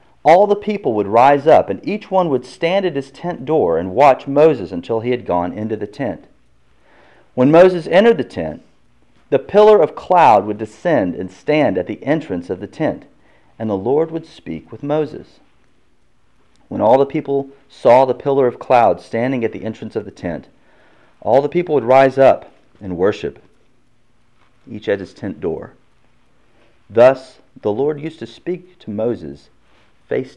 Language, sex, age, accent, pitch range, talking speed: English, male, 40-59, American, 95-145 Hz, 175 wpm